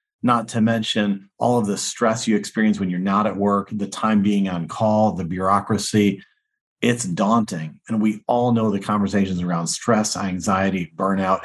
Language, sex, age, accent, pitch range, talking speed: English, male, 40-59, American, 95-115 Hz, 175 wpm